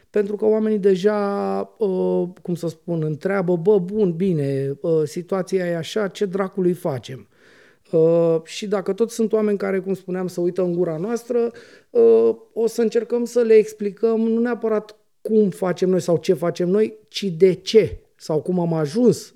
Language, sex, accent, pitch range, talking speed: Romanian, male, native, 160-205 Hz, 160 wpm